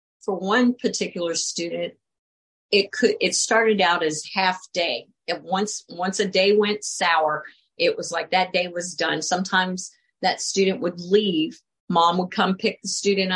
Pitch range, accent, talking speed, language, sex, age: 170-200 Hz, American, 165 wpm, English, female, 50-69